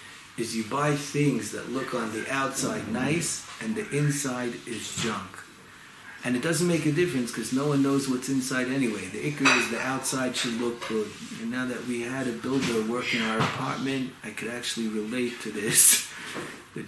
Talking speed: 190 wpm